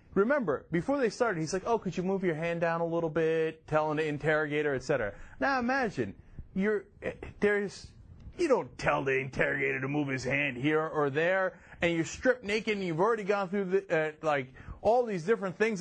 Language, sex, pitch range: English, male, 155-230 Hz